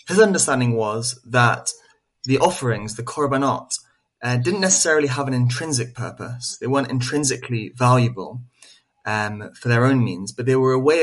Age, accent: 20-39, British